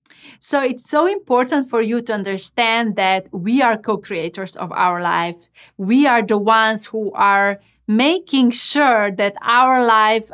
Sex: female